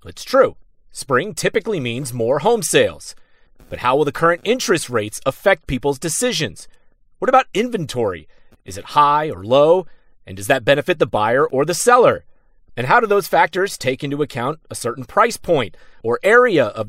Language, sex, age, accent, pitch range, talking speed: English, male, 30-49, American, 130-195 Hz, 180 wpm